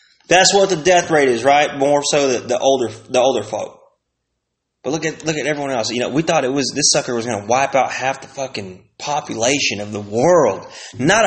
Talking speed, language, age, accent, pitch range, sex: 225 wpm, English, 20-39, American, 140-235 Hz, male